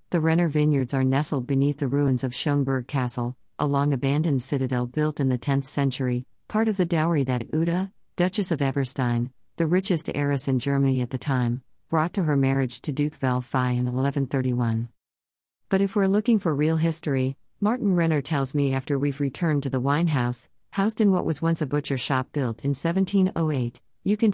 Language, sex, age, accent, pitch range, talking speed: English, female, 50-69, American, 130-165 Hz, 190 wpm